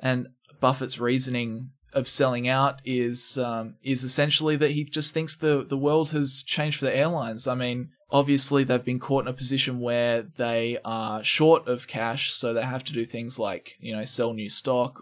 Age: 20-39